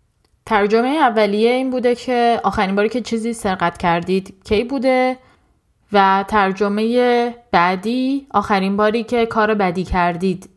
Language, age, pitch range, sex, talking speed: Persian, 10-29, 185-235 Hz, female, 125 wpm